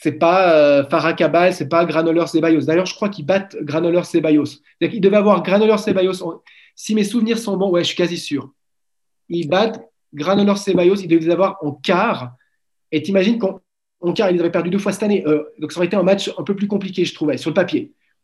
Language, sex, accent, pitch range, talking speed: French, male, French, 170-210 Hz, 235 wpm